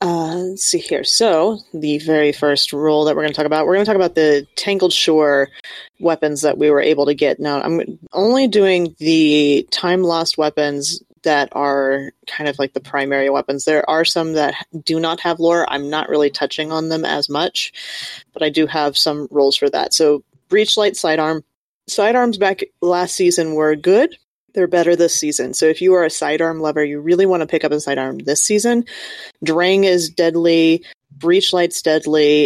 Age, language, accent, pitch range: 30-49, English, American, 145-175 Hz